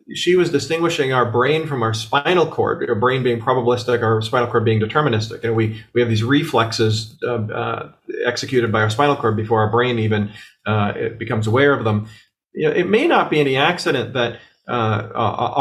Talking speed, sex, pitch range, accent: 195 wpm, male, 115-145 Hz, American